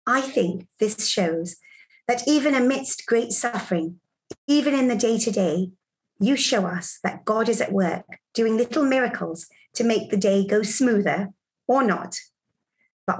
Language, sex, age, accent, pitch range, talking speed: English, female, 40-59, British, 185-240 Hz, 150 wpm